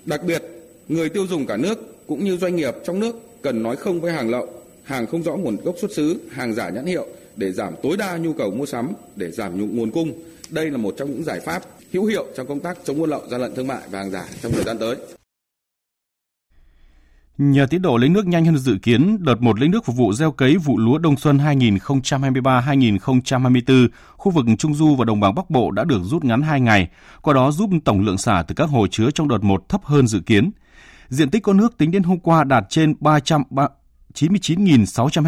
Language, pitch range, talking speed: Vietnamese, 115-165 Hz, 225 wpm